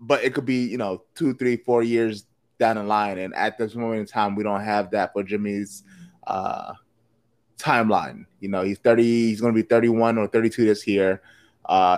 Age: 20-39